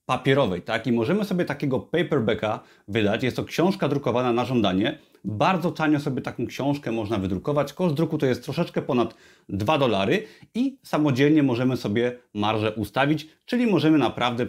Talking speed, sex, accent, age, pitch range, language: 155 wpm, male, native, 30-49, 120-155 Hz, Polish